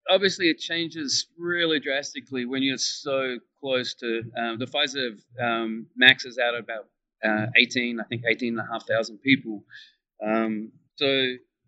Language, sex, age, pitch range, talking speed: English, male, 40-59, 110-135 Hz, 125 wpm